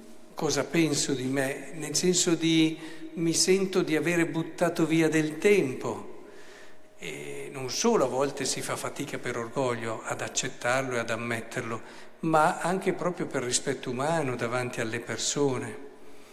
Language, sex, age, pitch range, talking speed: Italian, male, 50-69, 125-160 Hz, 145 wpm